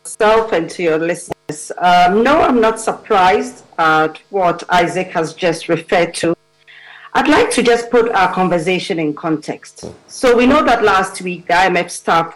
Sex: female